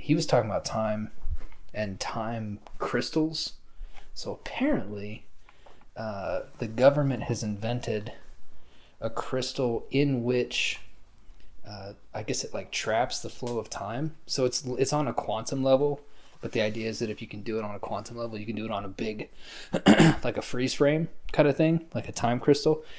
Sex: male